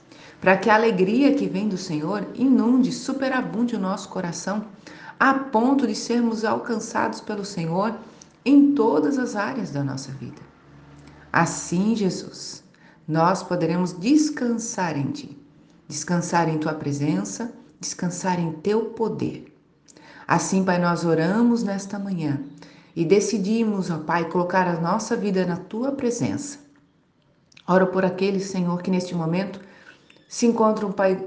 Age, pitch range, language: 40-59, 165-225 Hz, Portuguese